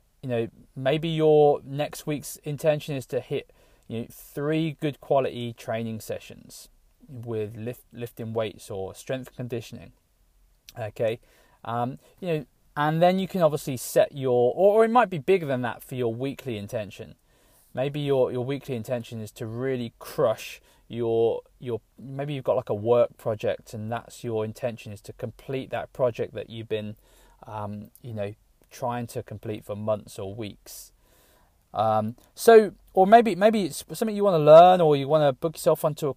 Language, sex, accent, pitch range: English, male, British, 115-155 Hz